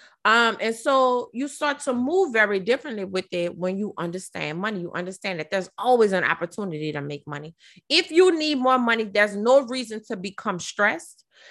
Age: 30-49